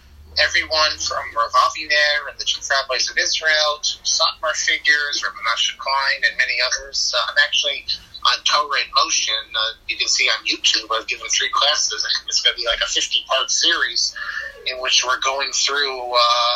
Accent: American